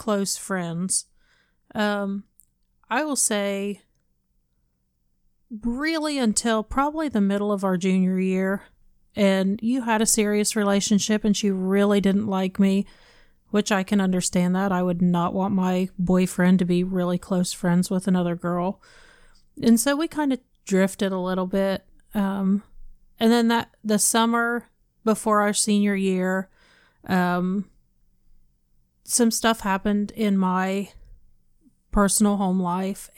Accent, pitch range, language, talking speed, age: American, 185-210 Hz, English, 135 wpm, 30-49